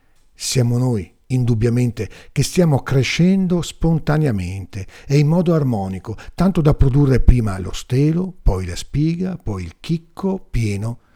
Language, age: Italian, 50-69